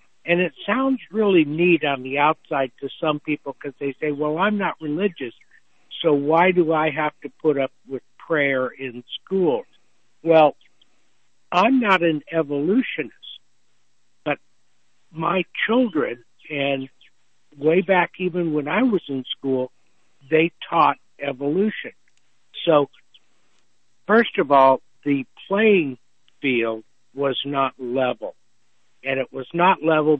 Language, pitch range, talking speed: English, 135-175 Hz, 130 wpm